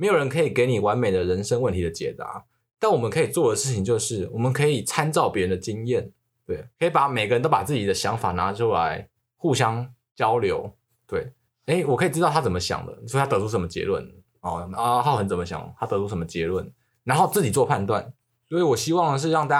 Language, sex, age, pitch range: Chinese, male, 20-39, 115-155 Hz